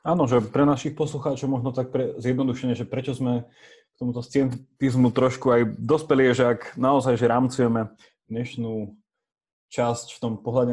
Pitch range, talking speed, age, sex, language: 115-140 Hz, 155 wpm, 20-39, male, Slovak